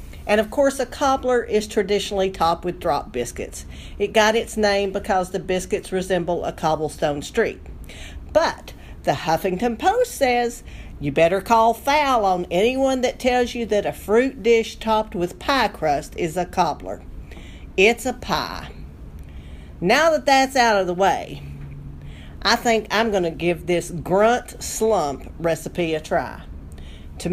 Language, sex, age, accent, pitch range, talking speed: English, female, 50-69, American, 170-235 Hz, 150 wpm